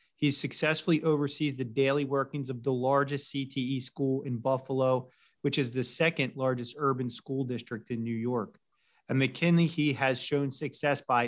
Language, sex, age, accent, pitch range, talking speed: English, male, 30-49, American, 130-150 Hz, 165 wpm